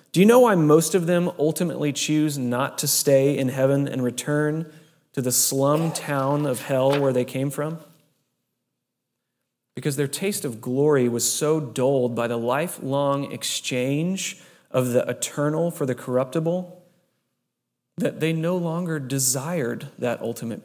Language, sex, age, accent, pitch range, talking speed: English, male, 30-49, American, 130-165 Hz, 150 wpm